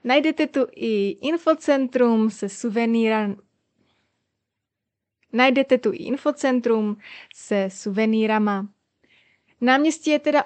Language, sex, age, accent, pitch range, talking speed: Czech, female, 20-39, native, 210-260 Hz, 85 wpm